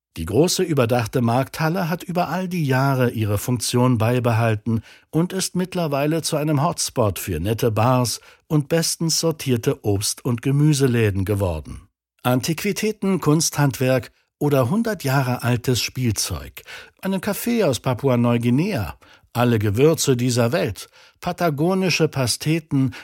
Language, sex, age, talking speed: German, male, 60-79, 115 wpm